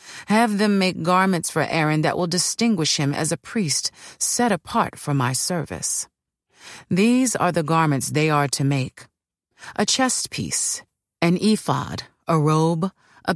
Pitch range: 145-205 Hz